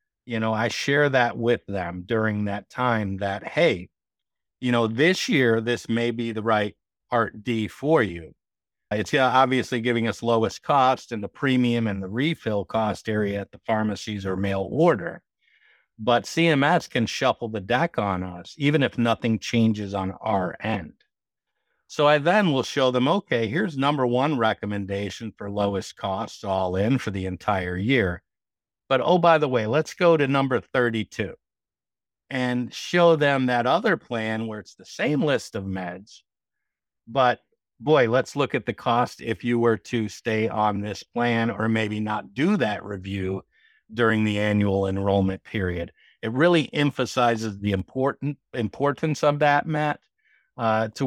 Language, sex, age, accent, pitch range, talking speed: English, male, 50-69, American, 105-130 Hz, 165 wpm